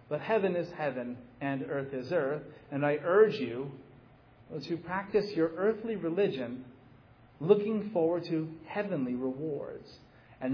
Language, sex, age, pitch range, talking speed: English, male, 40-59, 130-190 Hz, 130 wpm